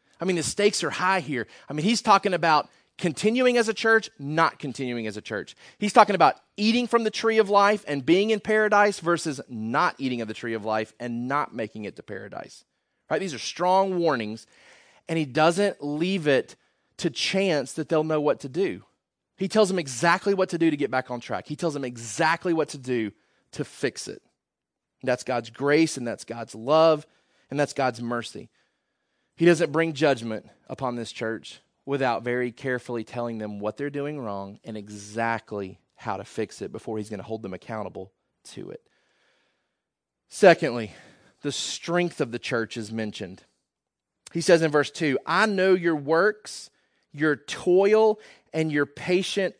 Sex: male